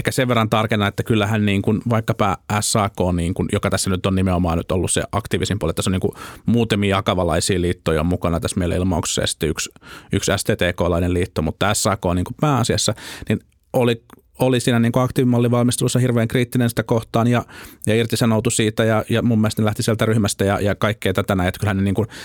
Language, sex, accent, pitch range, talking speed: Finnish, male, native, 95-115 Hz, 195 wpm